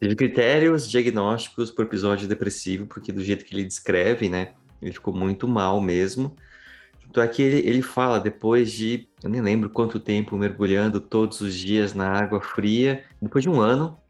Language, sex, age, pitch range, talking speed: Portuguese, male, 30-49, 95-115 Hz, 175 wpm